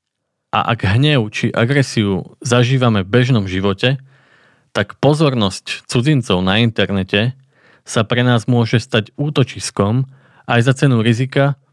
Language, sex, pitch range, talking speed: Slovak, male, 105-130 Hz, 125 wpm